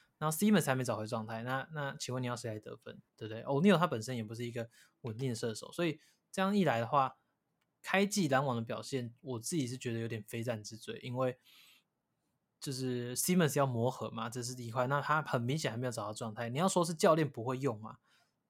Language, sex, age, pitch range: Chinese, male, 20-39, 115-145 Hz